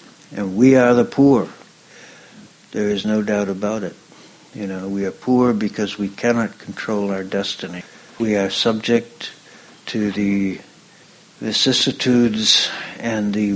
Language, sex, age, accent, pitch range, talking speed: English, male, 60-79, American, 100-110 Hz, 135 wpm